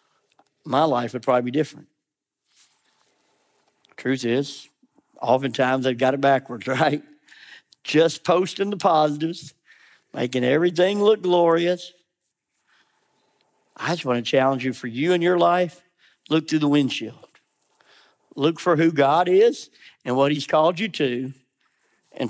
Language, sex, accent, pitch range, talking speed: English, male, American, 140-190 Hz, 130 wpm